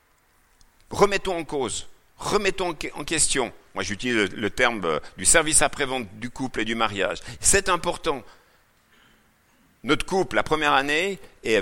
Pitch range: 100-165 Hz